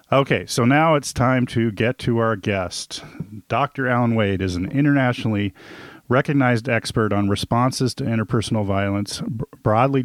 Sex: male